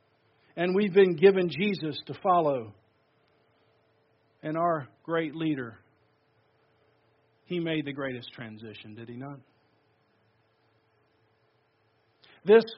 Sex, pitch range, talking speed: male, 115-180 Hz, 95 wpm